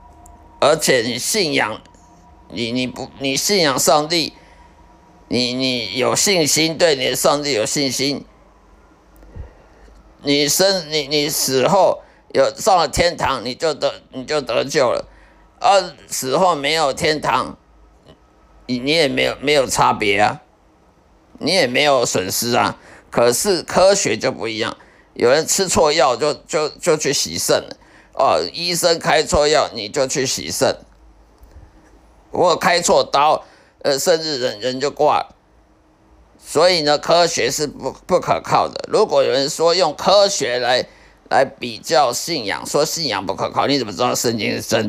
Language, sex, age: Chinese, male, 50-69